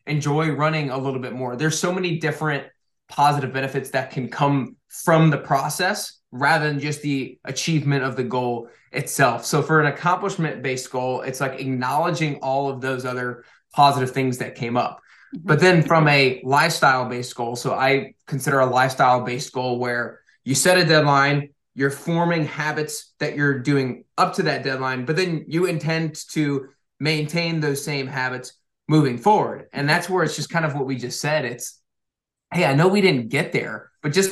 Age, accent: 20-39, American